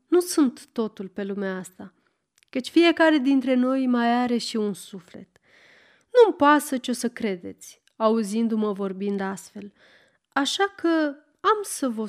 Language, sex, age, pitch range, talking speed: Romanian, female, 30-49, 205-300 Hz, 145 wpm